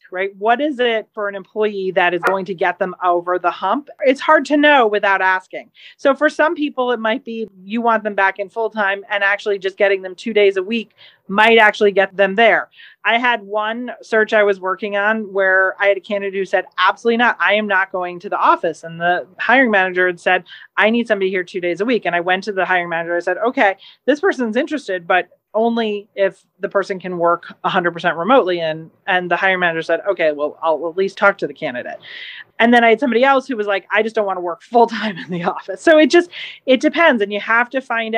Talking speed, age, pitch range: 245 wpm, 30-49, 185-230 Hz